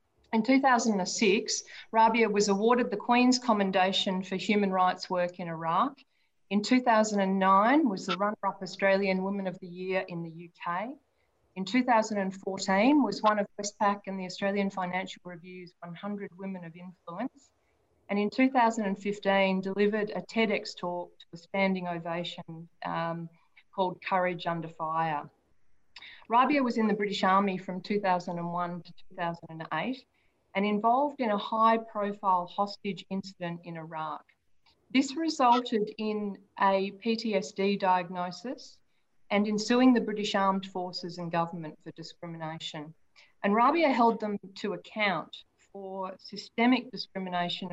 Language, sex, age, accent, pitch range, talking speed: English, female, 40-59, Australian, 180-220 Hz, 130 wpm